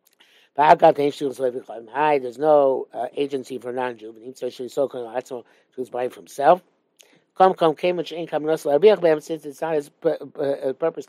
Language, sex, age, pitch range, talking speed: English, male, 60-79, 140-180 Hz, 170 wpm